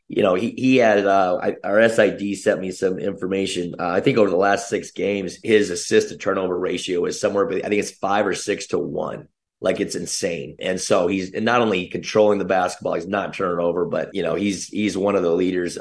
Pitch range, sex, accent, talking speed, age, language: 90-105 Hz, male, American, 230 wpm, 30-49, English